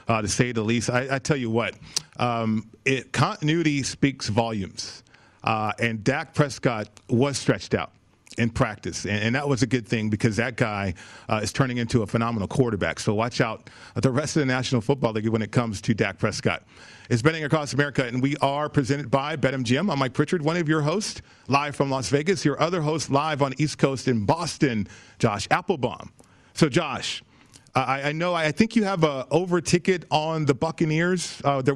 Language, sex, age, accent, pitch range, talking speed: English, male, 40-59, American, 120-150 Hz, 195 wpm